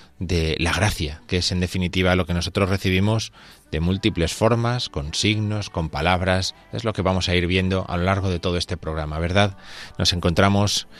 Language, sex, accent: Spanish, male, Spanish